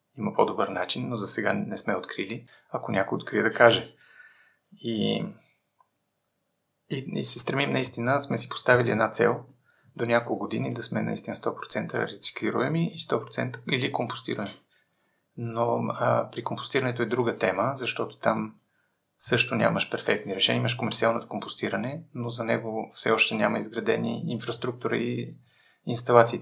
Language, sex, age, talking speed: Bulgarian, male, 30-49, 140 wpm